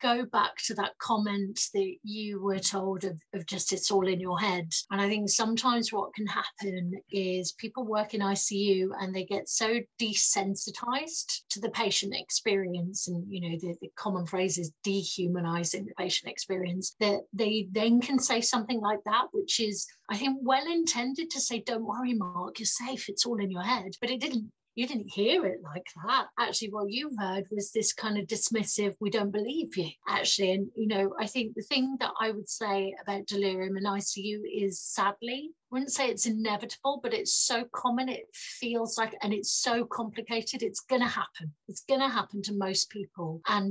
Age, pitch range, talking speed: 30-49, 195-235 Hz, 195 wpm